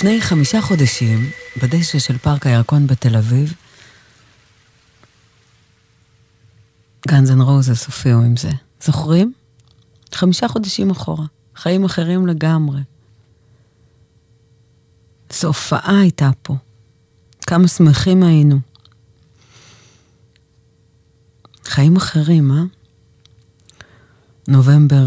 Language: English